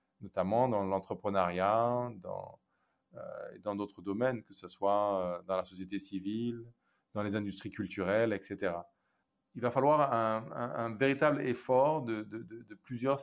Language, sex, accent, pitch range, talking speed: French, male, French, 115-150 Hz, 150 wpm